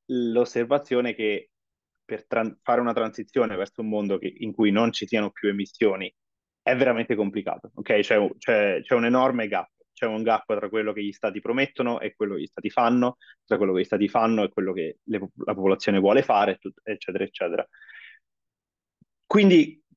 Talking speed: 185 wpm